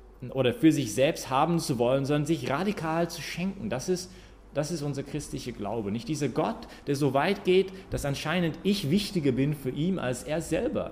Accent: German